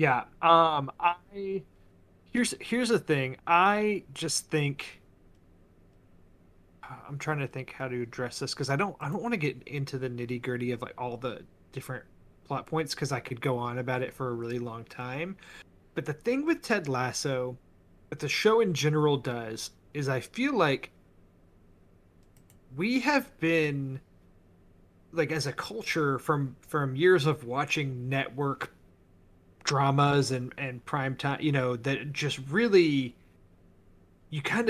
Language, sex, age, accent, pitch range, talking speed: English, male, 30-49, American, 120-165 Hz, 155 wpm